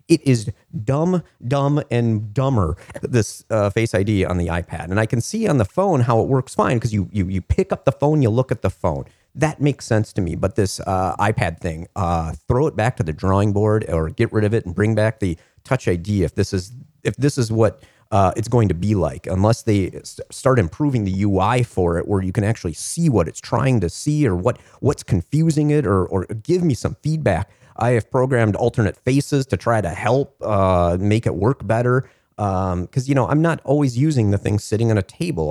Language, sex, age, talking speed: English, male, 40-59, 230 wpm